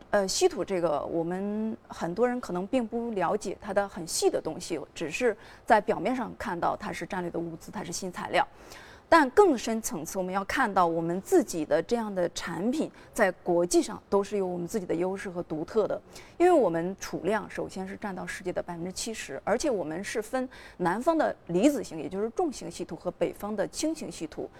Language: Chinese